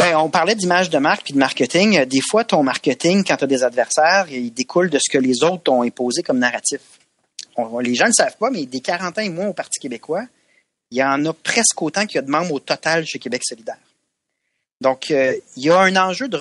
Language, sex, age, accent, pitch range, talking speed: French, male, 30-49, Canadian, 125-175 Hz, 245 wpm